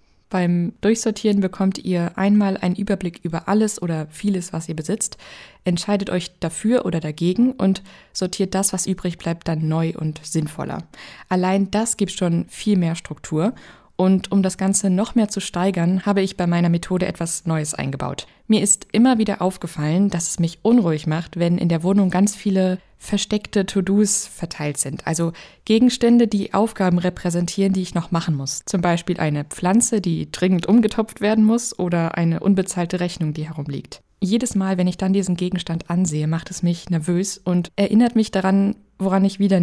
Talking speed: 175 wpm